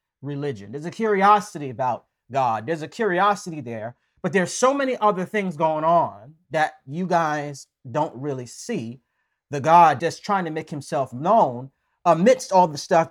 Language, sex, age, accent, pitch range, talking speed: English, male, 40-59, American, 145-210 Hz, 165 wpm